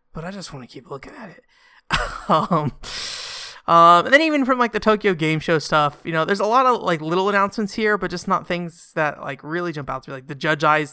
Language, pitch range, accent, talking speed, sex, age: English, 130-175 Hz, American, 255 wpm, male, 20-39